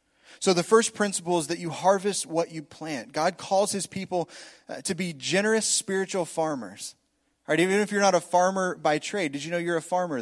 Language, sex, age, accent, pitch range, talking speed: English, male, 20-39, American, 150-190 Hz, 200 wpm